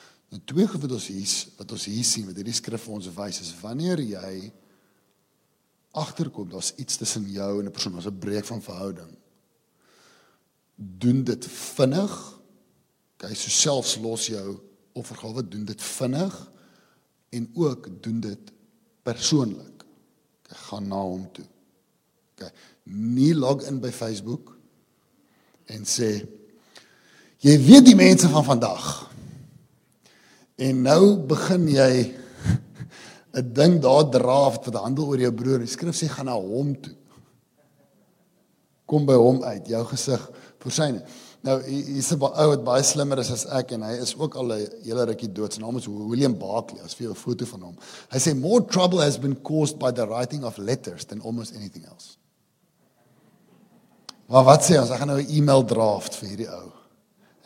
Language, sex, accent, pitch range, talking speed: English, male, Dutch, 110-140 Hz, 165 wpm